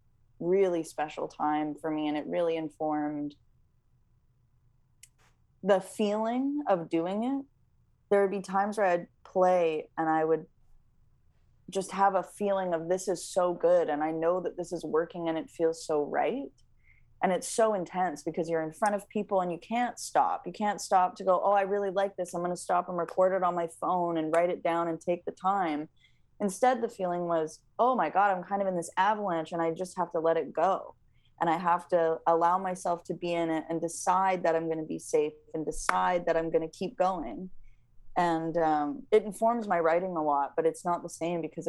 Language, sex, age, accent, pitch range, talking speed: English, female, 20-39, American, 155-185 Hz, 215 wpm